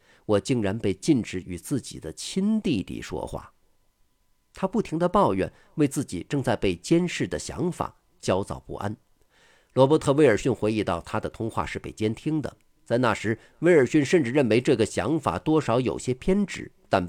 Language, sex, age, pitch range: Chinese, male, 50-69, 100-150 Hz